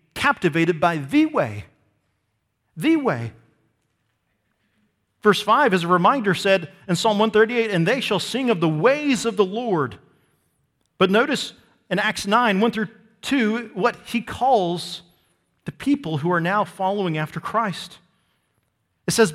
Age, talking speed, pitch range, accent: 40-59, 145 wpm, 140-205 Hz, American